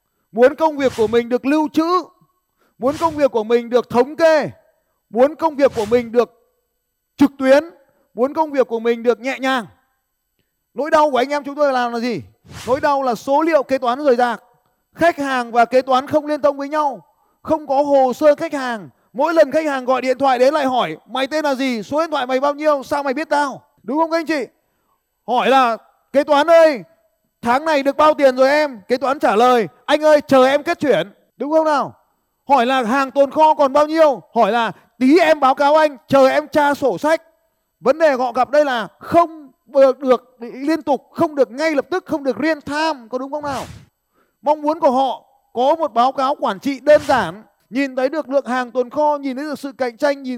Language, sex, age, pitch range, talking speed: Vietnamese, male, 20-39, 245-300 Hz, 225 wpm